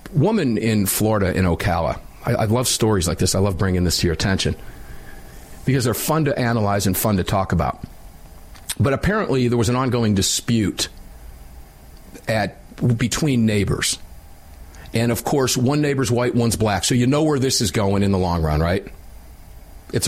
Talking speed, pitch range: 175 wpm, 90-120 Hz